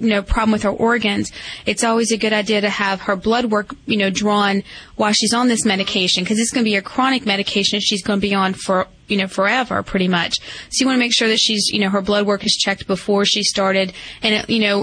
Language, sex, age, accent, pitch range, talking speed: English, female, 30-49, American, 200-230 Hz, 265 wpm